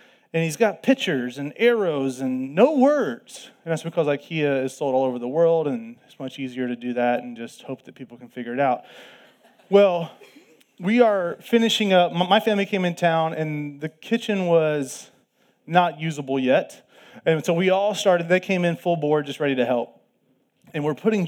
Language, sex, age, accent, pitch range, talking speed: English, male, 30-49, American, 140-195 Hz, 195 wpm